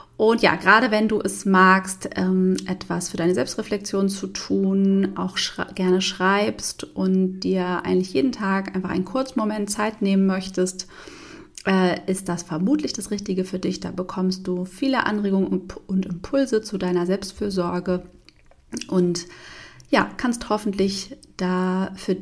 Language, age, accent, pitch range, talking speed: German, 30-49, German, 185-225 Hz, 135 wpm